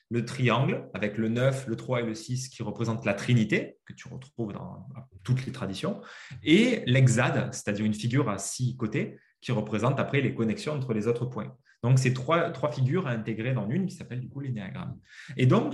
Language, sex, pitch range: French, male, 110-135 Hz